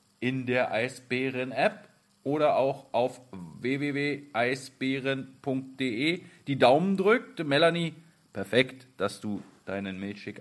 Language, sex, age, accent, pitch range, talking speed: German, male, 40-59, German, 105-140 Hz, 90 wpm